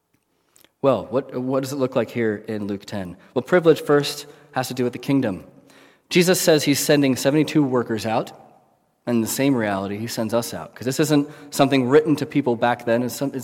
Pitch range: 110-135 Hz